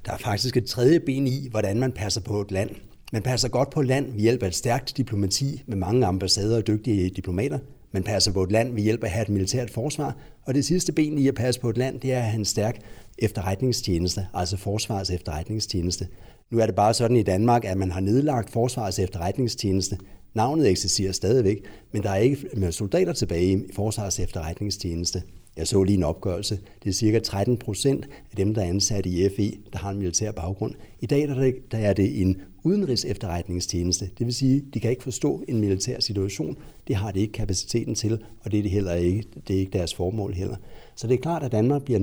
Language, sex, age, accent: Danish, male, 60-79, native